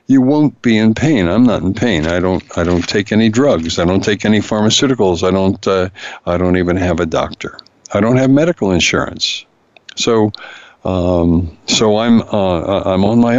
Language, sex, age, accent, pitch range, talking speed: English, male, 60-79, American, 90-110 Hz, 195 wpm